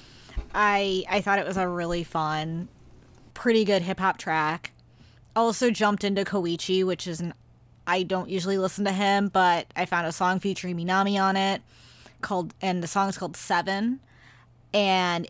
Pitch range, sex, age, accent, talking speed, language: 170-195 Hz, female, 20-39, American, 160 wpm, English